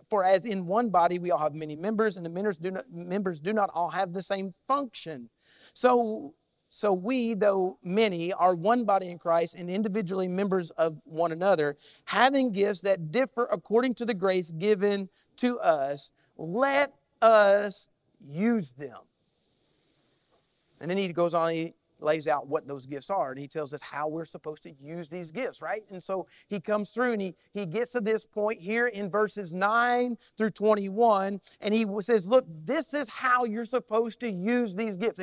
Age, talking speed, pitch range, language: 40-59, 185 wpm, 185-240 Hz, English